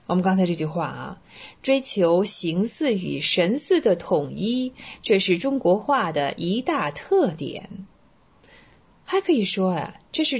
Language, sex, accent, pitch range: Chinese, female, native, 175-275 Hz